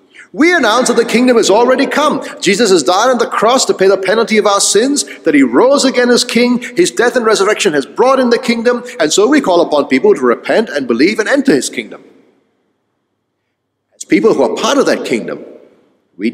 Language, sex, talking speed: English, male, 215 wpm